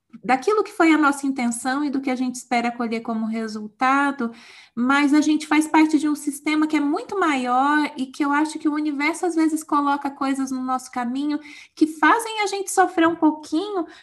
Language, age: Portuguese, 20-39